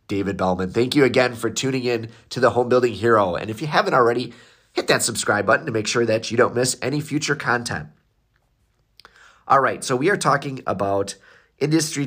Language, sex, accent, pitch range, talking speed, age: English, male, American, 100-125 Hz, 200 wpm, 30-49